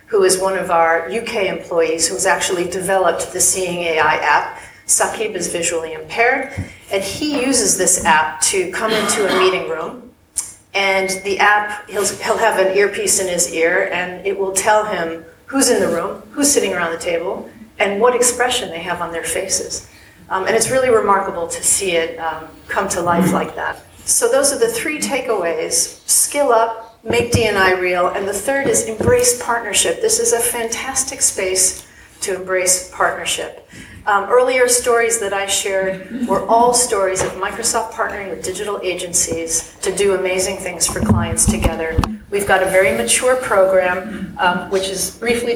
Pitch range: 180-230 Hz